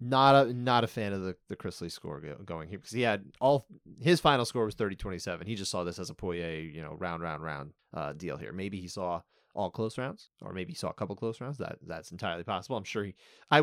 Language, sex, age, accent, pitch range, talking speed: English, male, 30-49, American, 95-130 Hz, 270 wpm